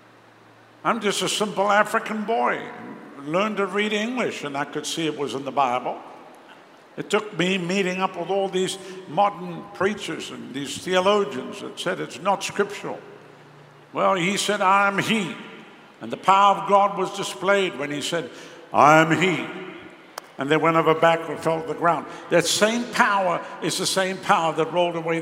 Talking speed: 180 wpm